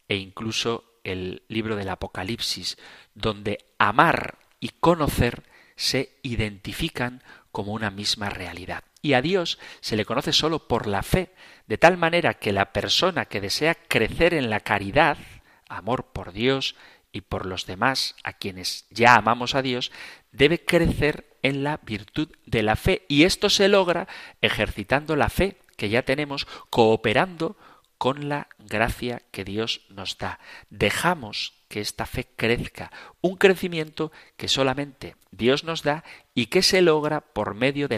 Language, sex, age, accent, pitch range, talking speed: Spanish, male, 40-59, Spanish, 105-145 Hz, 155 wpm